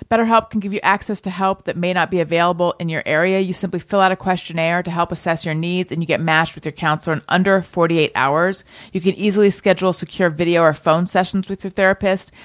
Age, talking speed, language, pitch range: 30-49, 235 wpm, English, 170-205 Hz